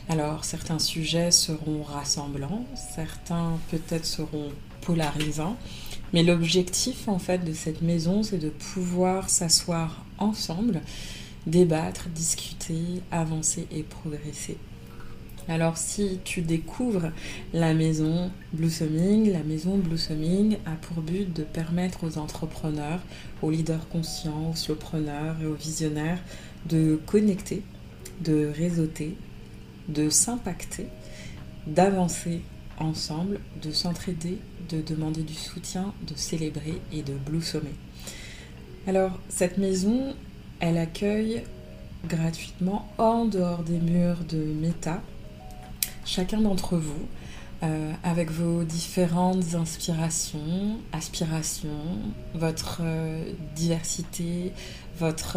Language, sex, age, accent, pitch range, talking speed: French, female, 30-49, French, 155-180 Hz, 105 wpm